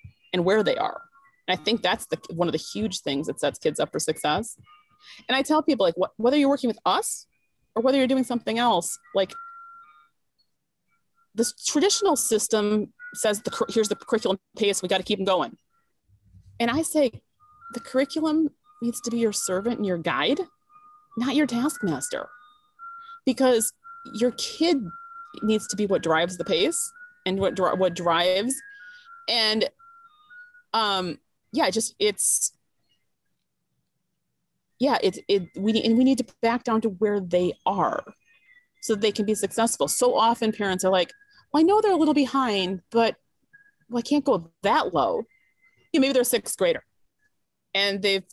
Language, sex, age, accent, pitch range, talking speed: English, female, 30-49, American, 185-290 Hz, 170 wpm